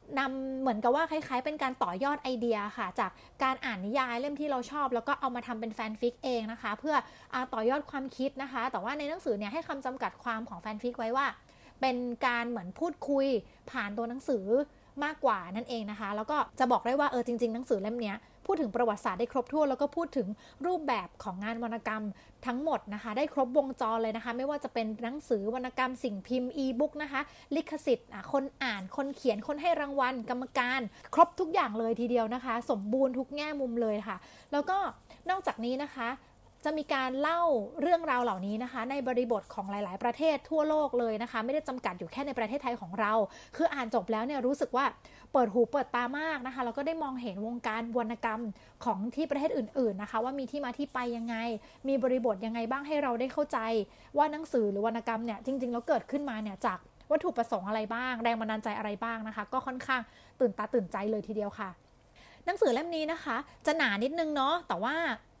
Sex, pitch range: female, 230-280 Hz